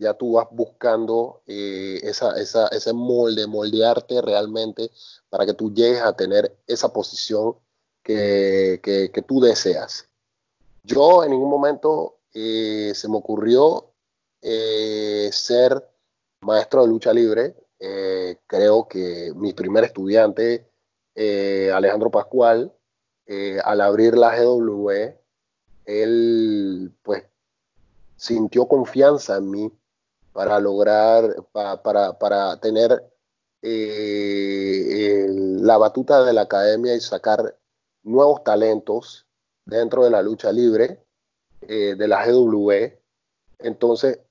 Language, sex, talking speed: Spanish, male, 115 wpm